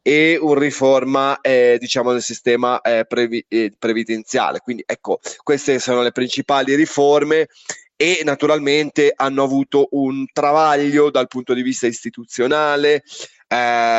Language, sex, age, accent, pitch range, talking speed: Italian, male, 20-39, native, 120-145 Hz, 130 wpm